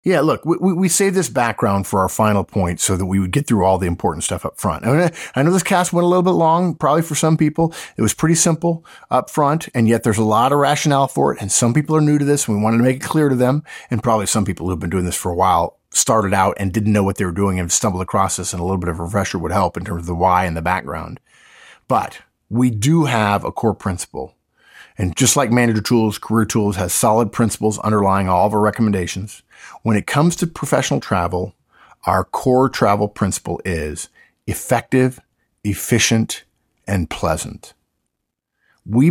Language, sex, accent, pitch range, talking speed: English, male, American, 95-135 Hz, 225 wpm